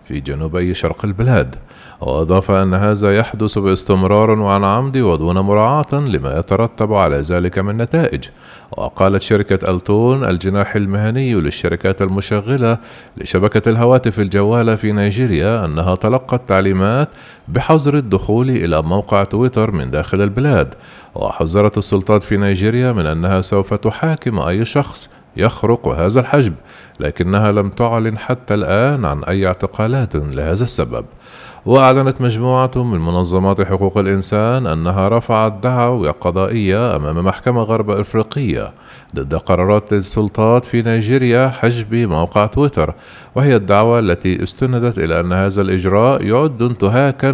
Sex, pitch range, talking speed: male, 95-120 Hz, 125 wpm